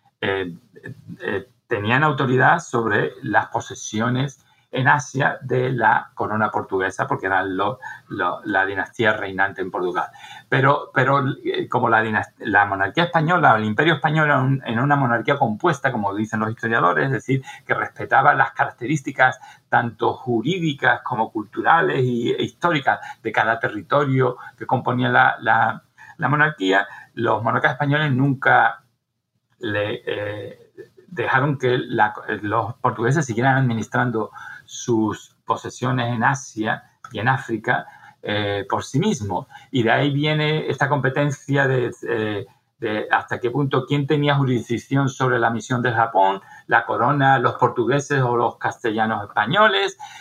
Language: Spanish